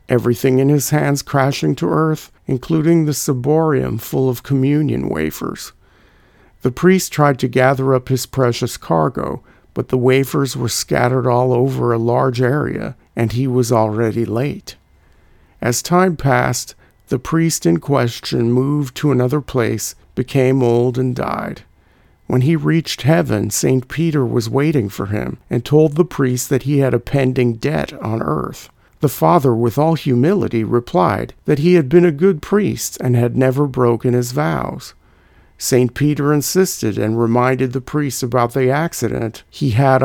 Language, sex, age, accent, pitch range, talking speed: English, male, 50-69, American, 120-145 Hz, 160 wpm